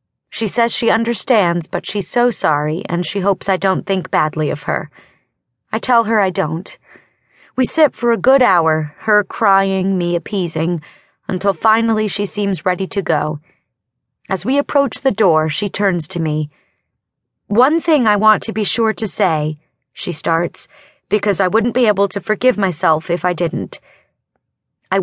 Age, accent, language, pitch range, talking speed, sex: 30-49, American, English, 165-220 Hz, 170 wpm, female